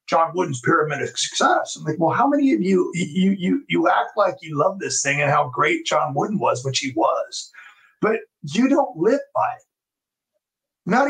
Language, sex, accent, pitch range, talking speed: English, male, American, 185-255 Hz, 200 wpm